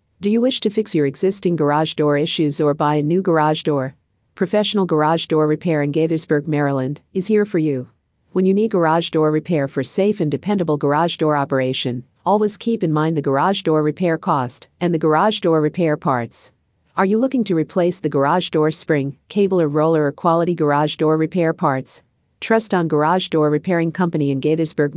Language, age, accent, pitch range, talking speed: English, 50-69, American, 145-180 Hz, 195 wpm